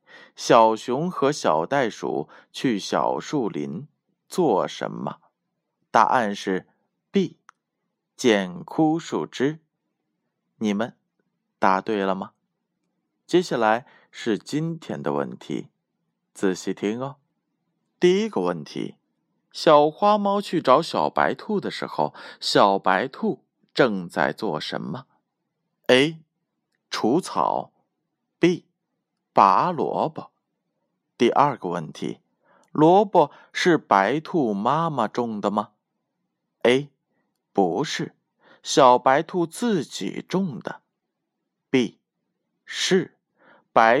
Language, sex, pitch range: Chinese, male, 100-170 Hz